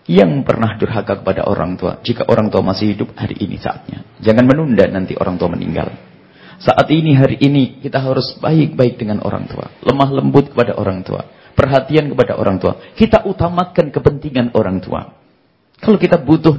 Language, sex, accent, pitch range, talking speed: English, male, Indonesian, 115-170 Hz, 170 wpm